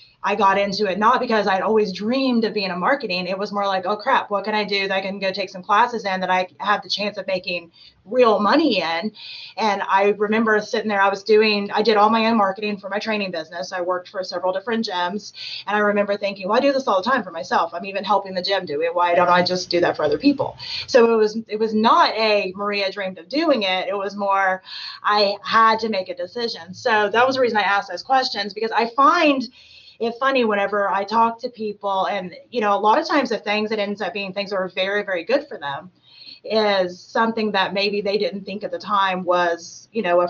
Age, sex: 30-49, female